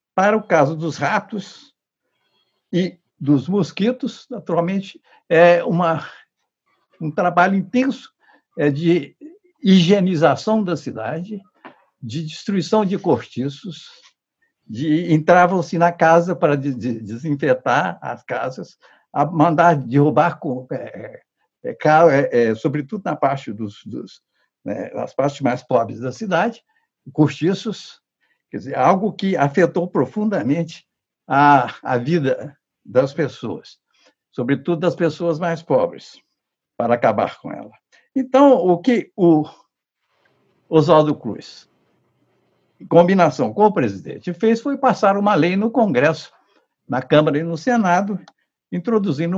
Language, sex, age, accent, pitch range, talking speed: Portuguese, male, 60-79, Brazilian, 150-200 Hz, 100 wpm